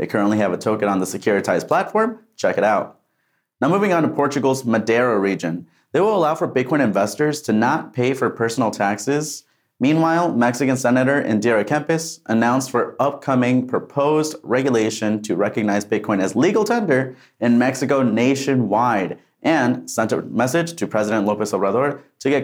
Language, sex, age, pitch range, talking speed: English, male, 30-49, 105-140 Hz, 160 wpm